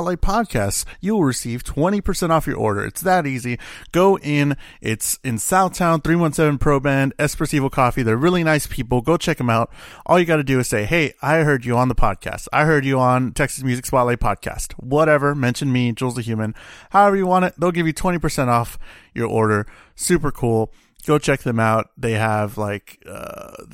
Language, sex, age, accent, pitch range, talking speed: English, male, 30-49, American, 120-155 Hz, 195 wpm